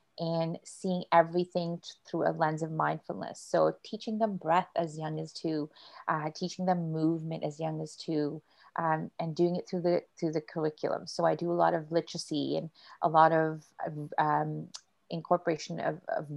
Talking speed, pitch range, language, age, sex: 175 wpm, 160-180 Hz, English, 30-49, female